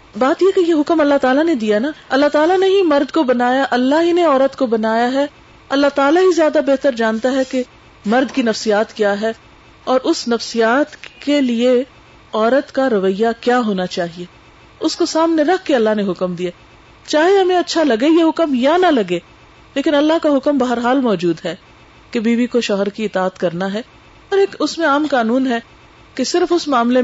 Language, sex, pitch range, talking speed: Urdu, female, 200-270 Hz, 205 wpm